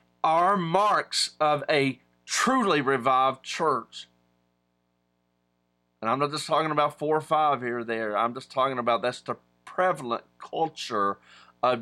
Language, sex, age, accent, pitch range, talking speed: English, male, 40-59, American, 125-175 Hz, 140 wpm